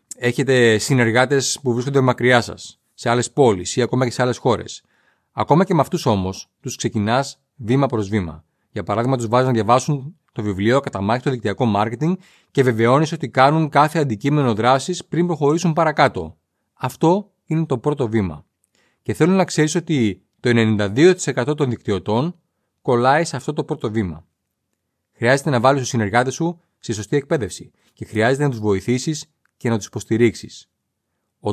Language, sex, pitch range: Greek, male, 115-155 Hz